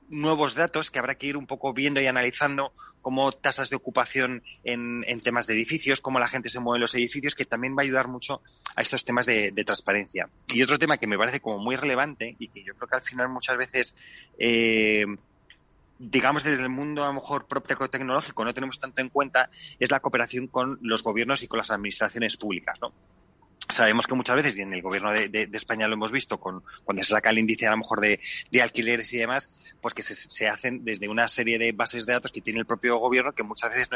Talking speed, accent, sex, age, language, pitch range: 235 wpm, Spanish, male, 30-49, Spanish, 115-135 Hz